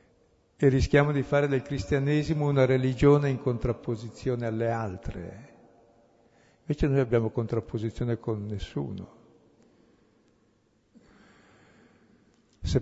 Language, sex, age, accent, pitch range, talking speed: Italian, male, 60-79, native, 115-130 Hz, 90 wpm